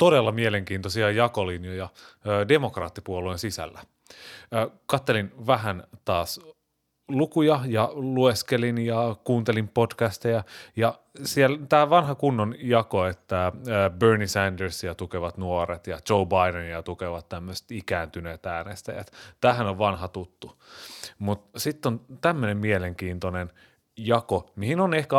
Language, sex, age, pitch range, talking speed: Finnish, male, 30-49, 95-125 Hz, 110 wpm